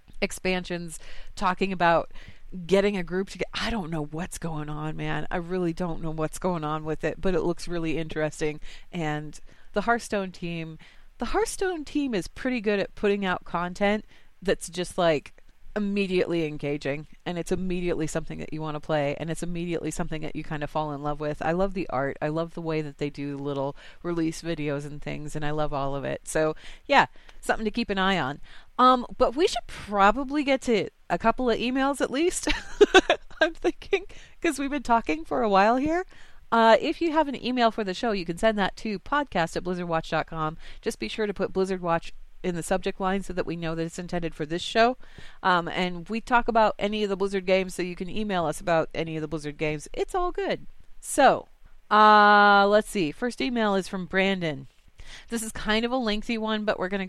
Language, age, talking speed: English, 30-49, 210 wpm